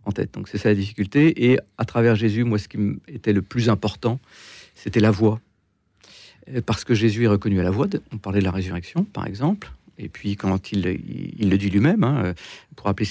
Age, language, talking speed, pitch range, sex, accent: 40-59, French, 220 wpm, 100-115 Hz, male, French